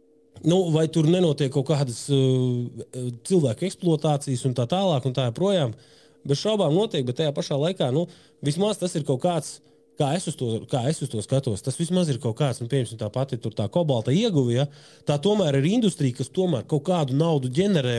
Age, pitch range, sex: 20-39, 125-165 Hz, male